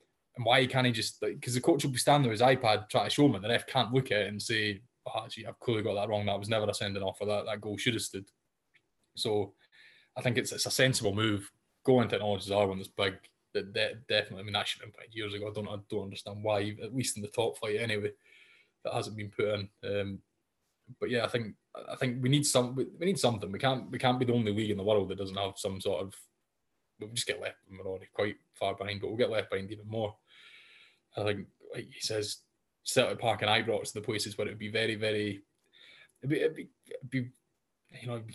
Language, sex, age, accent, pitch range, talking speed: English, male, 20-39, British, 105-125 Hz, 260 wpm